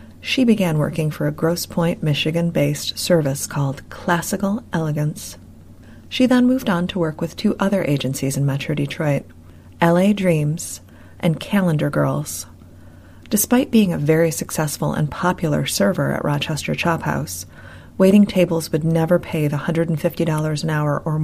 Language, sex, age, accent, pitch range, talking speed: English, female, 30-49, American, 135-195 Hz, 145 wpm